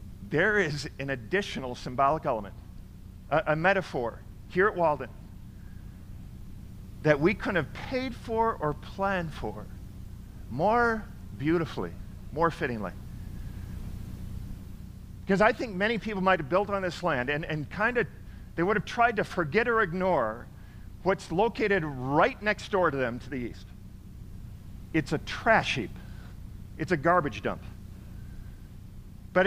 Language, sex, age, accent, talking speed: English, male, 50-69, American, 135 wpm